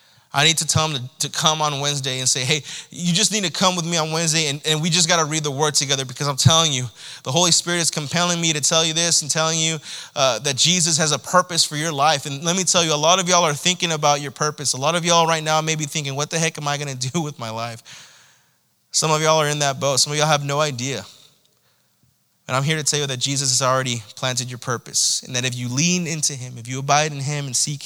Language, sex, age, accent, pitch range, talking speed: English, male, 20-39, American, 130-160 Hz, 285 wpm